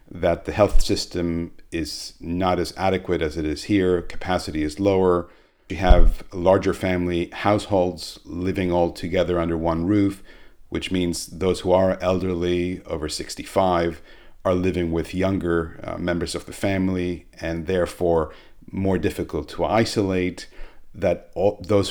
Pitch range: 85-95 Hz